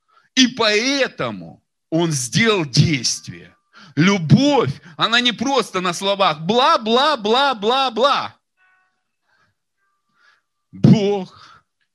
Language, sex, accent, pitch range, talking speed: Russian, male, native, 125-175 Hz, 65 wpm